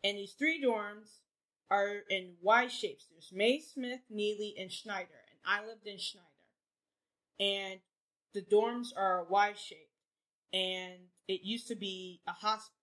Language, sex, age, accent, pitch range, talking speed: English, female, 20-39, American, 190-225 Hz, 155 wpm